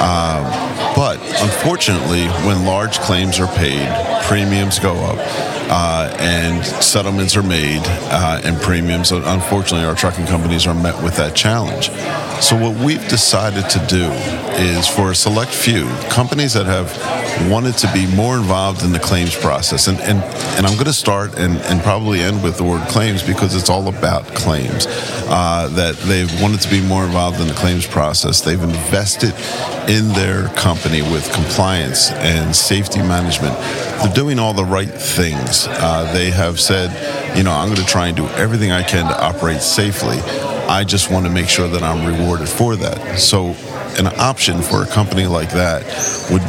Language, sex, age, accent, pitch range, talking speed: English, male, 40-59, American, 85-100 Hz, 175 wpm